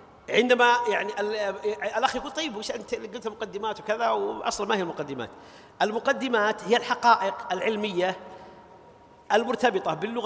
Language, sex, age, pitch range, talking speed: Arabic, male, 40-59, 215-260 Hz, 115 wpm